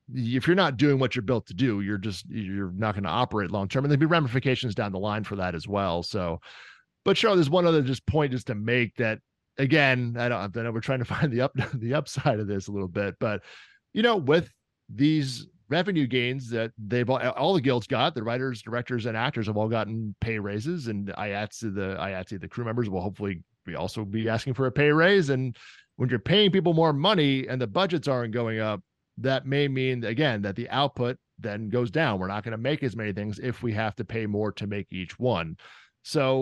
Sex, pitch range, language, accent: male, 105-140 Hz, English, American